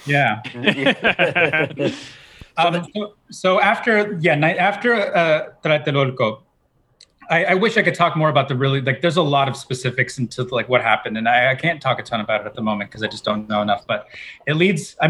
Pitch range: 120-155 Hz